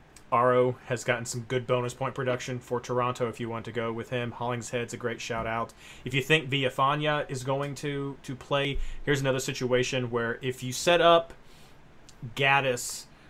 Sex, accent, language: male, American, English